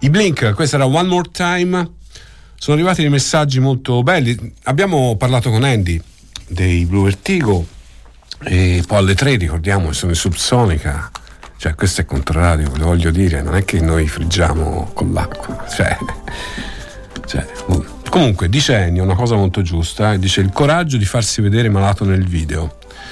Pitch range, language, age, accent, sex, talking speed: 85-120 Hz, Italian, 50-69, native, male, 160 wpm